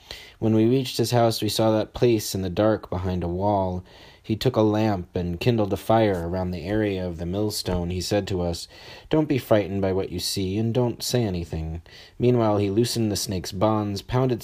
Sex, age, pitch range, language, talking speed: male, 30-49, 90-110 Hz, English, 210 wpm